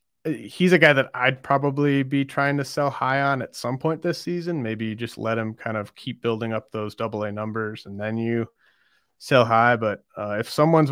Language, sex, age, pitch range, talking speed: English, male, 30-49, 110-125 Hz, 220 wpm